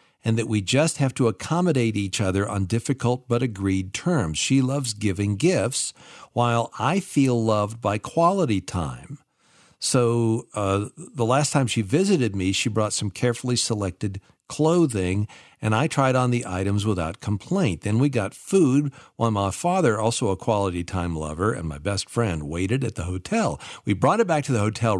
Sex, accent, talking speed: male, American, 180 wpm